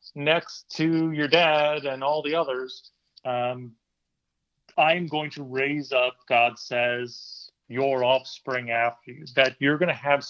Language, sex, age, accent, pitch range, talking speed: English, male, 40-59, American, 125-150 Hz, 145 wpm